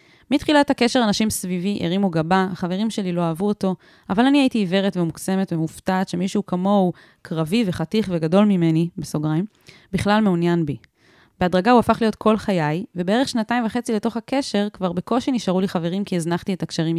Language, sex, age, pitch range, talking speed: Hebrew, female, 20-39, 170-215 Hz, 165 wpm